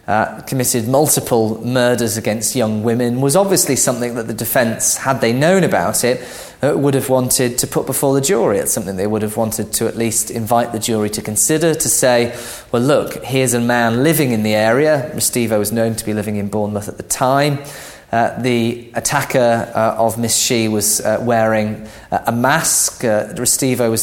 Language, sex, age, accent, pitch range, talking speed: English, male, 30-49, British, 110-135 Hz, 195 wpm